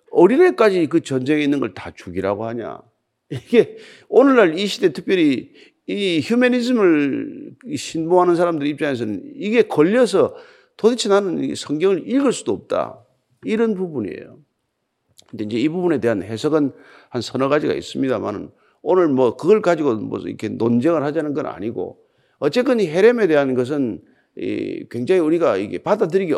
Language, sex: Korean, male